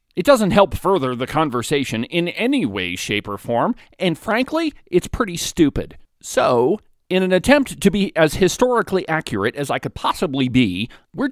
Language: English